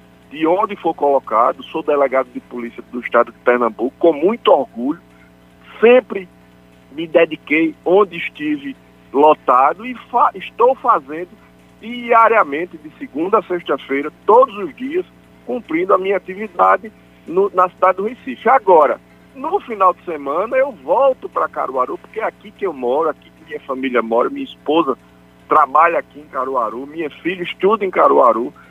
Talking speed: 150 wpm